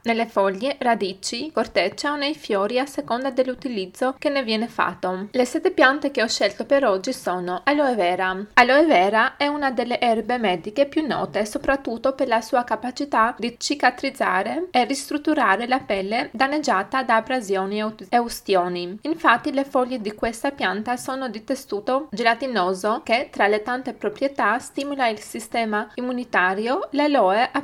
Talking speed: 155 wpm